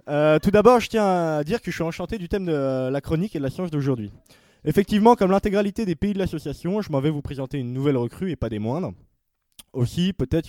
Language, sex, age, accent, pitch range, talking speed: French, male, 20-39, French, 135-185 Hz, 240 wpm